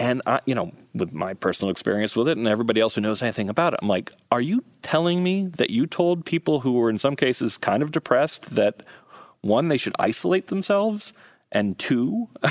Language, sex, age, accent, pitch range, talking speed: English, male, 30-49, American, 95-140 Hz, 205 wpm